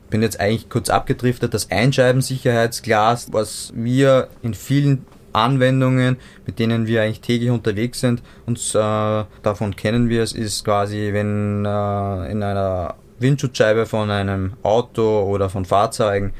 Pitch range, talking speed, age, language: 105-125 Hz, 145 wpm, 20-39, German